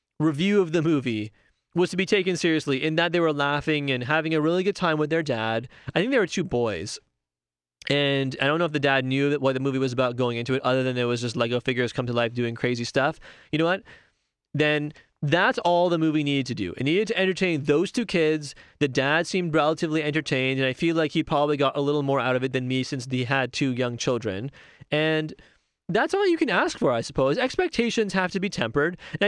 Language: English